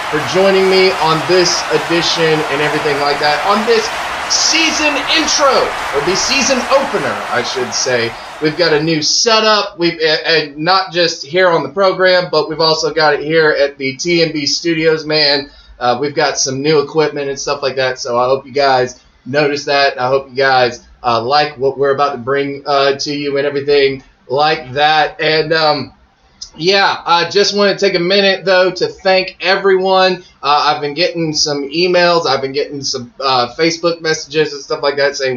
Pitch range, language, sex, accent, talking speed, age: 140-190 Hz, English, male, American, 190 wpm, 20-39